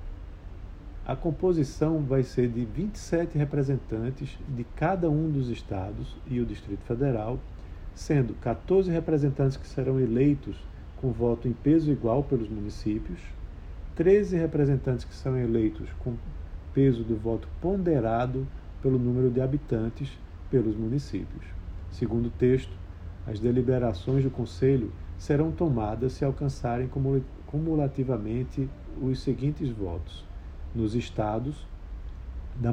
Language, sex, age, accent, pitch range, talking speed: Portuguese, male, 50-69, Brazilian, 95-135 Hz, 115 wpm